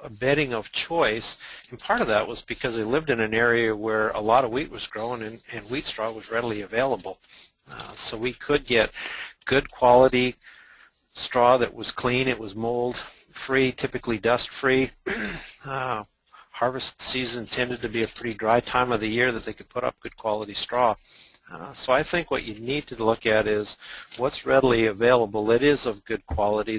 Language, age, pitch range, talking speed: English, 50-69, 110-130 Hz, 195 wpm